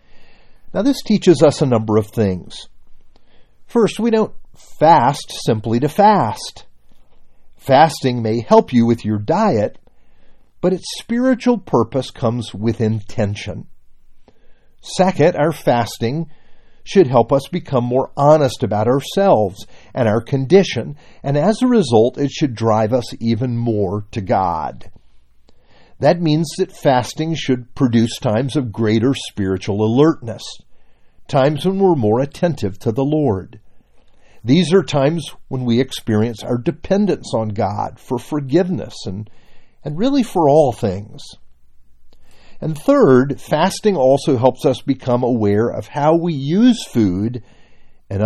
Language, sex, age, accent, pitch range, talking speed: English, male, 50-69, American, 110-160 Hz, 130 wpm